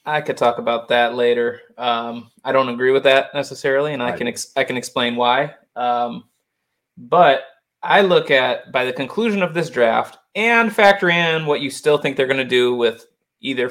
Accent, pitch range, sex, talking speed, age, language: American, 135-195 Hz, male, 195 wpm, 20-39, English